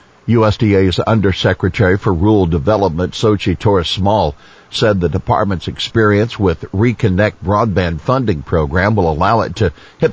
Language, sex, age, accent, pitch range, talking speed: English, male, 60-79, American, 85-110 Hz, 130 wpm